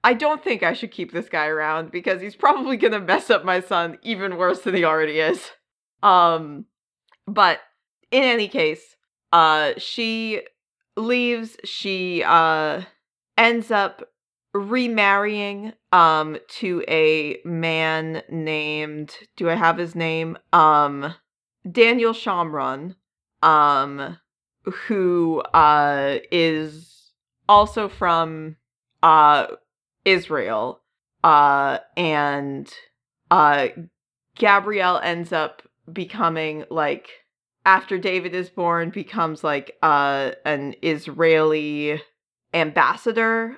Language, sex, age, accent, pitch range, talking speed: English, female, 30-49, American, 155-225 Hz, 105 wpm